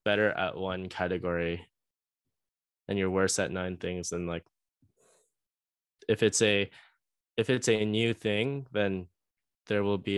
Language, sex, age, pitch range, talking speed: English, male, 10-29, 90-105 Hz, 140 wpm